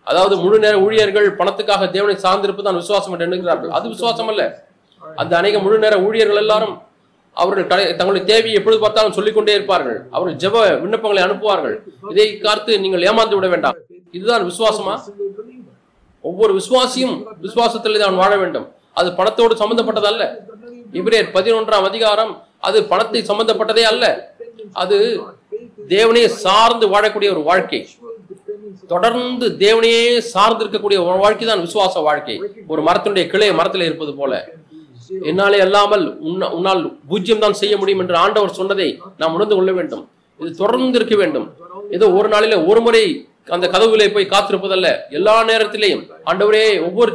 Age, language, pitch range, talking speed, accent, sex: 30-49, Tamil, 190-230 Hz, 100 wpm, native, male